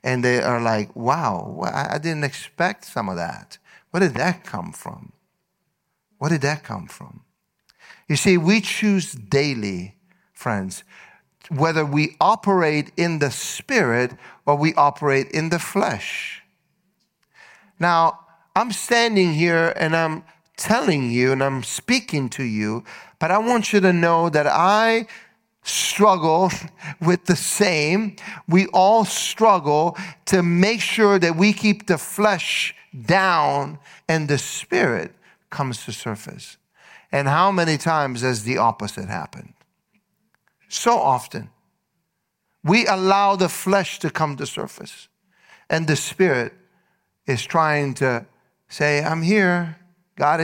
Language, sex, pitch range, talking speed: English, male, 145-195 Hz, 130 wpm